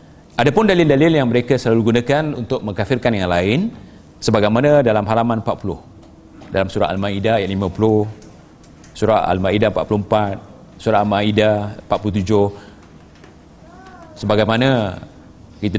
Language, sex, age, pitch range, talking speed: Malay, male, 40-59, 95-120 Hz, 105 wpm